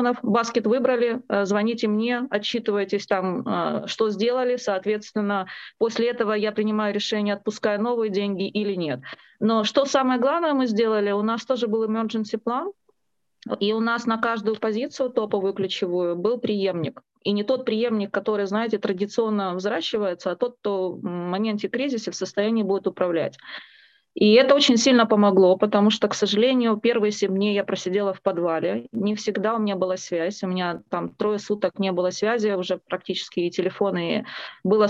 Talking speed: 160 wpm